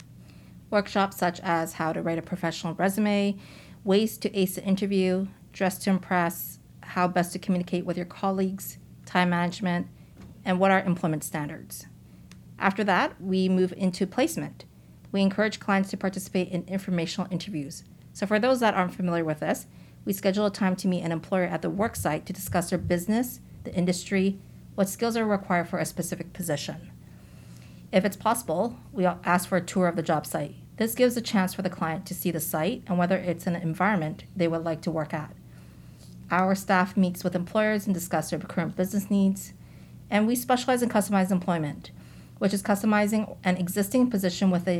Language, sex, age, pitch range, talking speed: English, female, 40-59, 165-195 Hz, 180 wpm